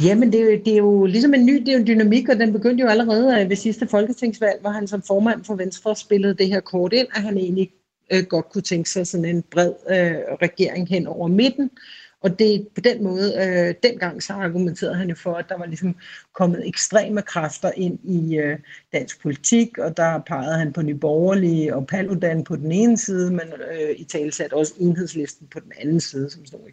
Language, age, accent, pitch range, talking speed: Danish, 60-79, native, 165-210 Hz, 215 wpm